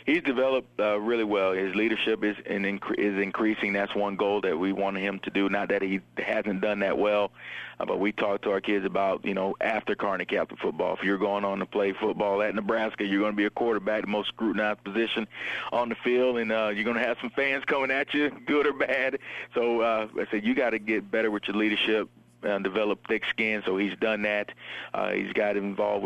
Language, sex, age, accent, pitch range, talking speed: English, male, 40-59, American, 100-110 Hz, 235 wpm